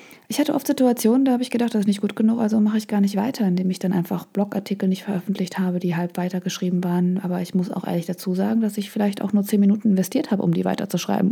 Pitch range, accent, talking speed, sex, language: 180-225 Hz, German, 265 wpm, female, German